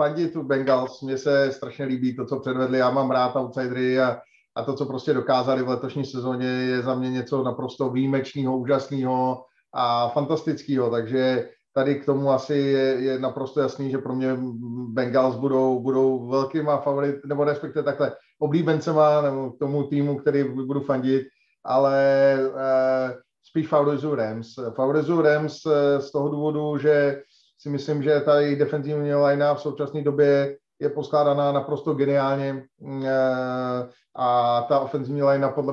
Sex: male